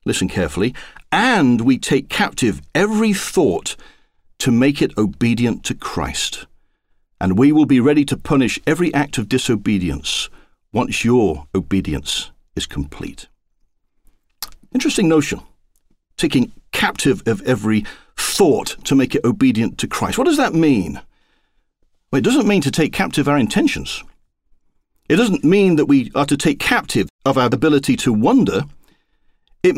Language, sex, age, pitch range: English, male, 50-69, 120-190 Hz